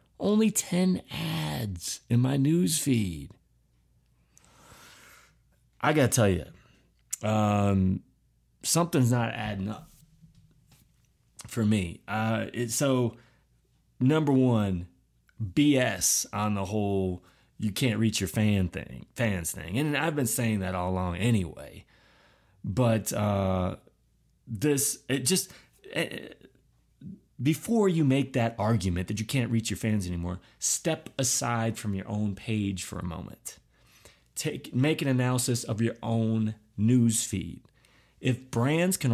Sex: male